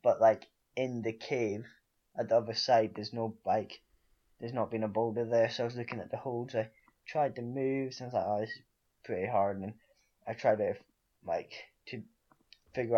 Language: English